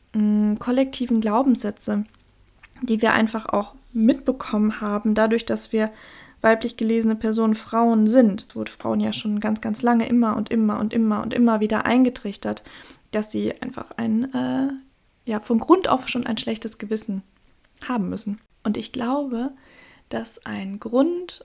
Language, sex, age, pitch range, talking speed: German, female, 20-39, 210-240 Hz, 150 wpm